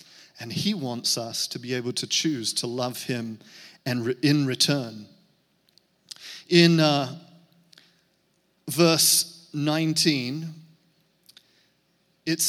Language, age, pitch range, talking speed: English, 40-59, 130-175 Hz, 95 wpm